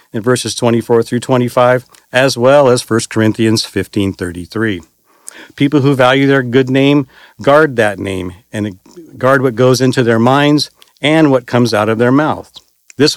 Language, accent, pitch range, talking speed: English, American, 105-135 Hz, 160 wpm